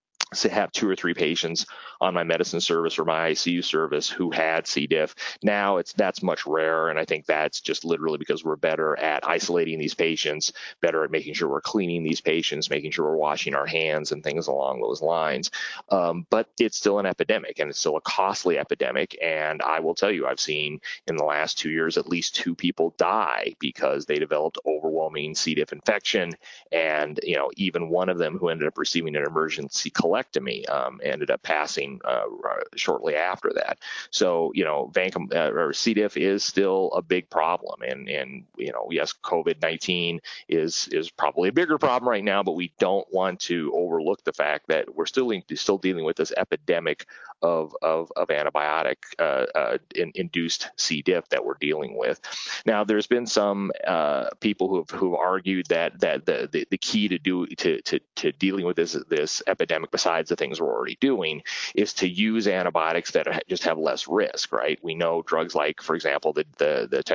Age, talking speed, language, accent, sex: 30-49, 195 wpm, English, American, male